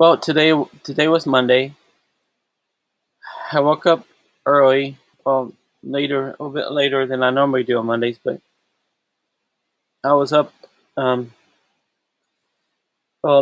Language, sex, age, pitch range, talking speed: English, male, 20-39, 130-145 Hz, 120 wpm